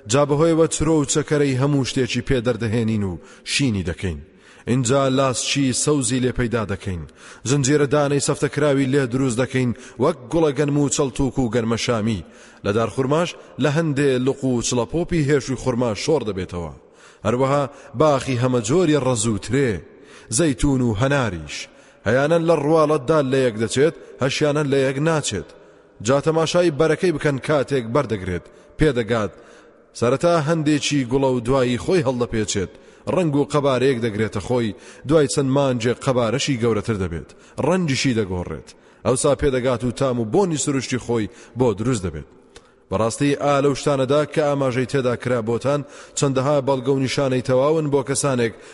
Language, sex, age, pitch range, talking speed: English, male, 30-49, 120-145 Hz, 145 wpm